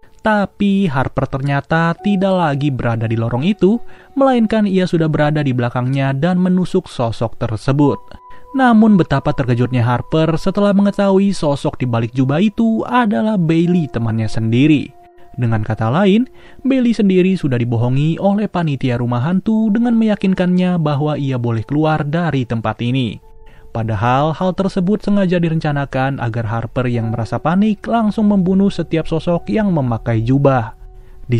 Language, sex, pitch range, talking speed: Indonesian, male, 125-195 Hz, 140 wpm